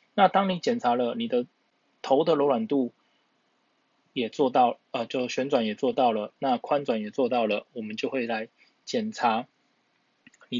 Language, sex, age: Chinese, male, 20-39